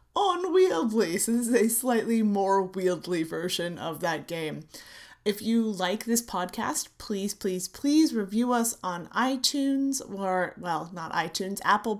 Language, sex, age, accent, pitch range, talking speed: English, female, 30-49, American, 185-245 Hz, 150 wpm